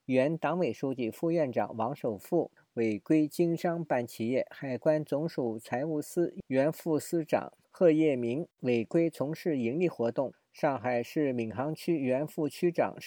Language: Chinese